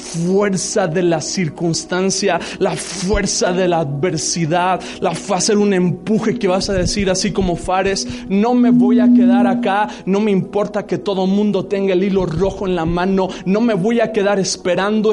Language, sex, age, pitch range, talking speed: Spanish, male, 30-49, 200-275 Hz, 180 wpm